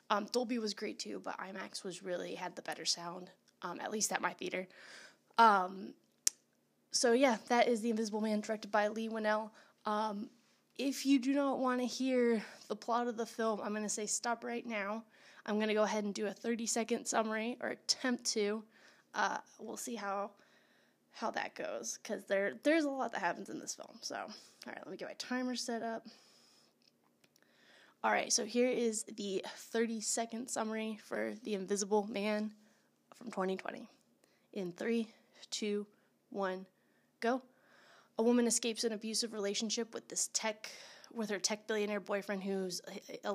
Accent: American